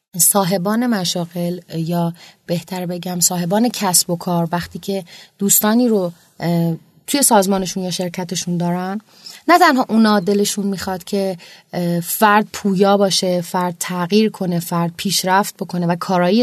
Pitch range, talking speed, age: 175-225 Hz, 130 wpm, 30-49